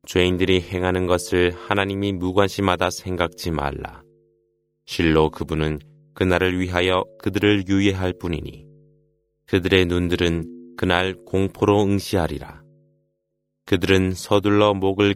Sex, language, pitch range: male, Korean, 85-105 Hz